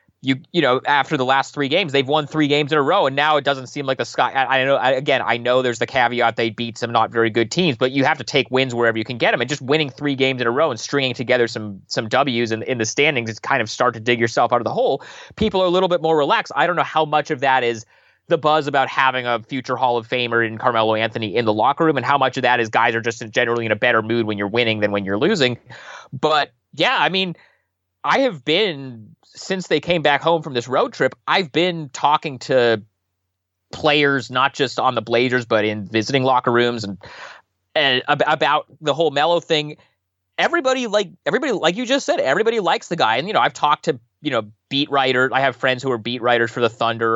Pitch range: 115-145 Hz